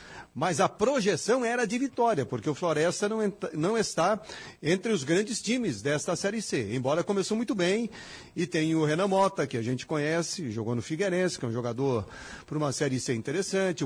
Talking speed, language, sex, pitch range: 195 wpm, Portuguese, male, 130-195 Hz